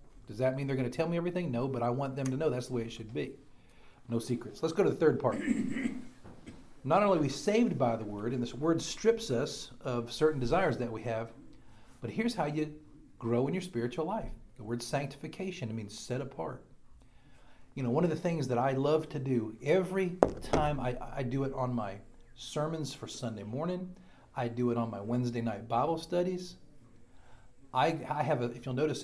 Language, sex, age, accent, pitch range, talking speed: English, male, 40-59, American, 115-140 Hz, 215 wpm